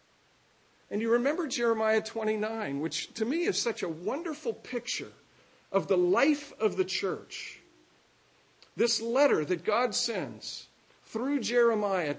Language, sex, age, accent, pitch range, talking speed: English, male, 50-69, American, 190-270 Hz, 130 wpm